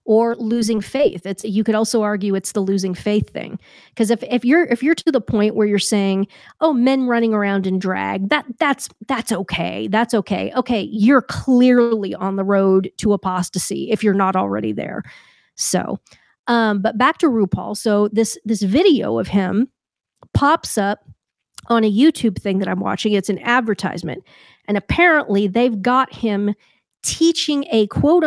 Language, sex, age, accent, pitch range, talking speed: English, female, 40-59, American, 205-255 Hz, 175 wpm